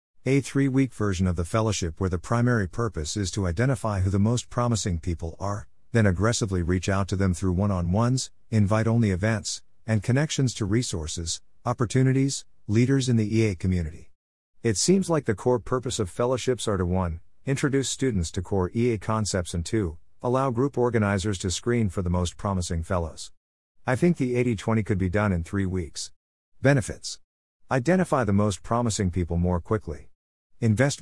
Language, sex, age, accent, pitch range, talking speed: English, male, 50-69, American, 90-120 Hz, 170 wpm